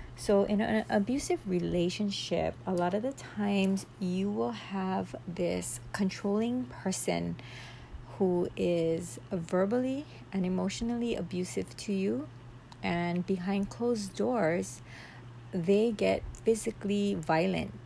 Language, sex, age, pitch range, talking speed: English, female, 40-59, 120-195 Hz, 110 wpm